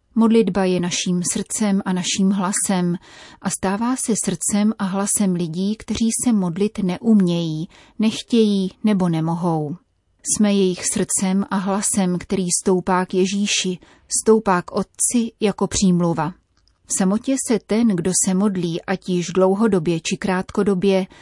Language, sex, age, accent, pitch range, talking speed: Czech, female, 30-49, native, 185-215 Hz, 135 wpm